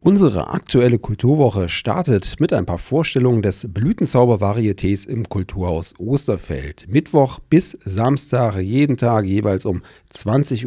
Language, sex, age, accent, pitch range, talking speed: German, male, 40-59, German, 95-125 Hz, 120 wpm